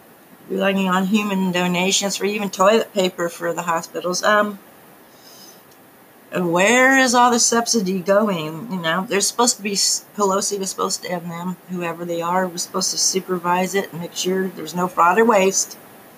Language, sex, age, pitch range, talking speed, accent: English, female, 40-59, 175-210 Hz, 170 wpm, American